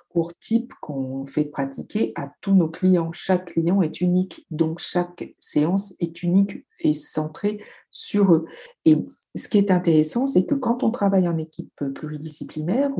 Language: French